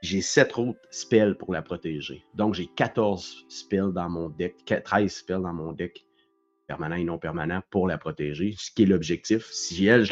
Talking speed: 195 wpm